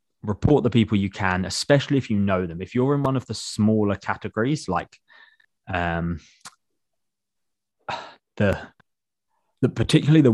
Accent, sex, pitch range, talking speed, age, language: British, male, 95-115 Hz, 140 wpm, 20-39, English